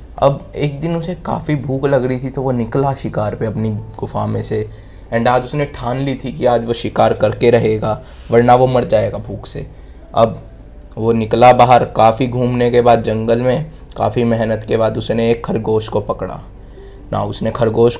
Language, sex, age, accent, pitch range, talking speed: Hindi, male, 20-39, native, 110-135 Hz, 195 wpm